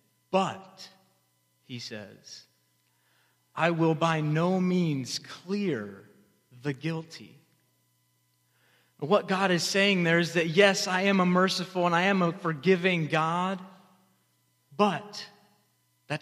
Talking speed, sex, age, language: 115 wpm, male, 30-49, English